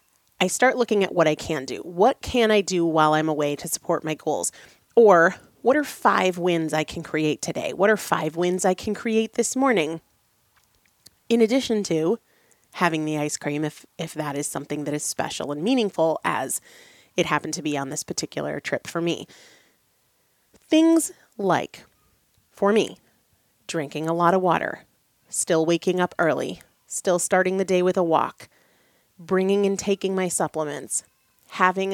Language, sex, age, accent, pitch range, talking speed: English, female, 30-49, American, 165-205 Hz, 170 wpm